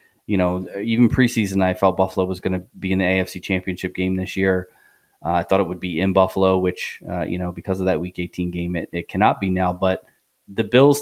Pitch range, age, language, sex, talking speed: 95-105 Hz, 20-39, English, male, 240 wpm